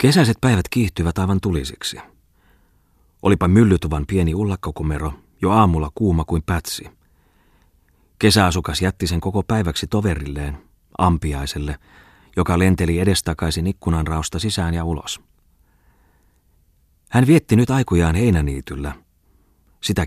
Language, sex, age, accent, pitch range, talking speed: Finnish, male, 30-49, native, 75-95 Hz, 105 wpm